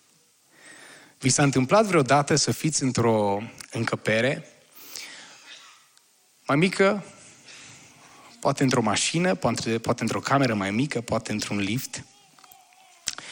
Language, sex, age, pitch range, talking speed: Romanian, male, 20-39, 135-200 Hz, 100 wpm